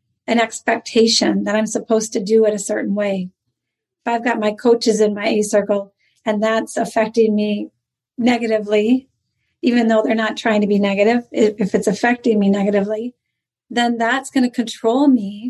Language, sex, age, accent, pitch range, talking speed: English, female, 40-59, American, 210-245 Hz, 165 wpm